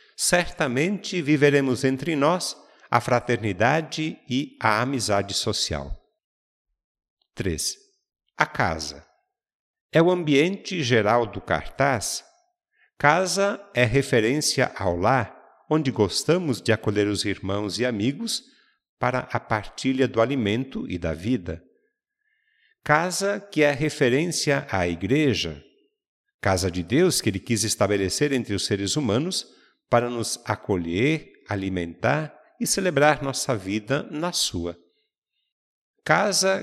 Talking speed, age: 110 wpm, 50-69